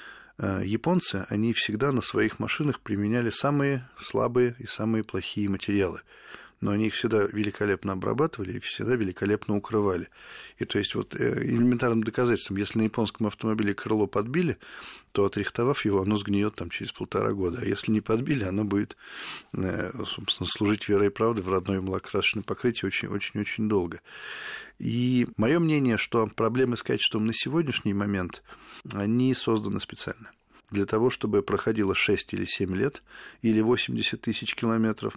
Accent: native